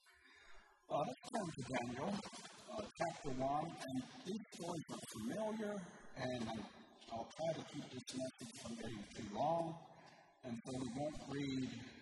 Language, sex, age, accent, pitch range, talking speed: English, male, 50-69, American, 135-205 Hz, 150 wpm